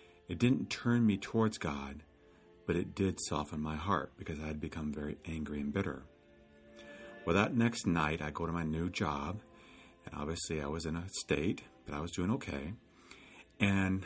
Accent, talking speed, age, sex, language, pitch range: American, 185 wpm, 50-69, male, English, 75-100 Hz